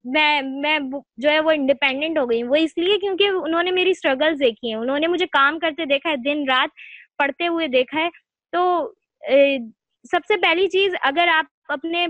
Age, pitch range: 20-39, 260-335 Hz